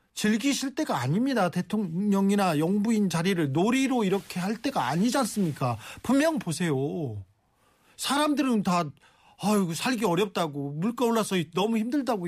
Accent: native